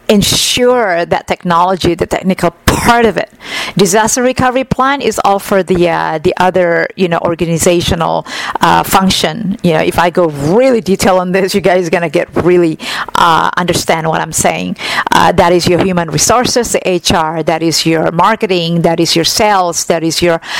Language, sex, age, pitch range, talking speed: English, female, 50-69, 170-205 Hz, 185 wpm